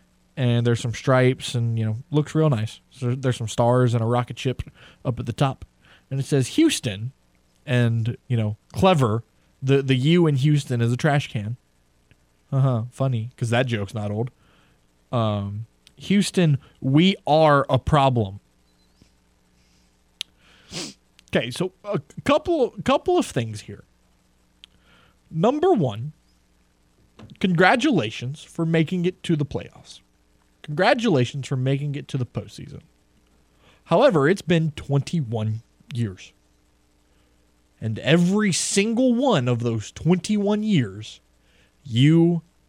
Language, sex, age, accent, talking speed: English, male, 20-39, American, 125 wpm